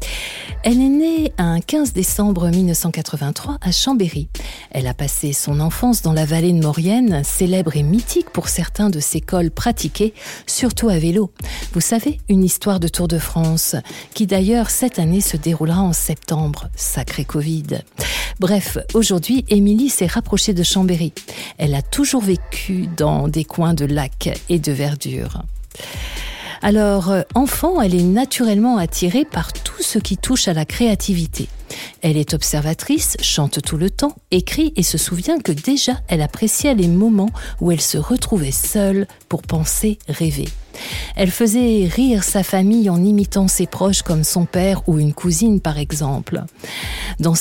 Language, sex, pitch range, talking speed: French, female, 160-215 Hz, 160 wpm